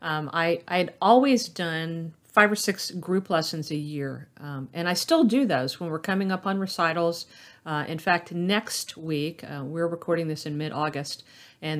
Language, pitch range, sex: English, 150-200 Hz, female